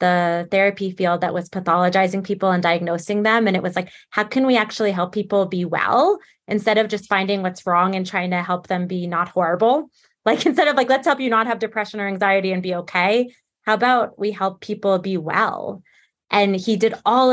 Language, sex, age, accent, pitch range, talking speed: English, female, 20-39, American, 185-215 Hz, 215 wpm